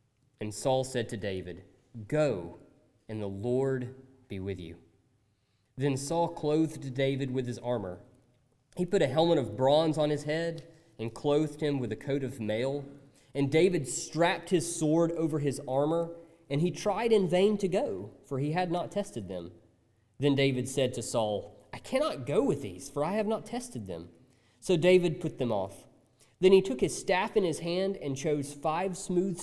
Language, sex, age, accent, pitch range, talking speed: English, male, 30-49, American, 125-165 Hz, 185 wpm